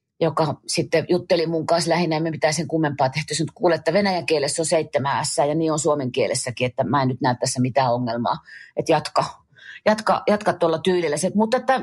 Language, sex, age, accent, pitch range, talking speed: Finnish, female, 30-49, native, 150-190 Hz, 200 wpm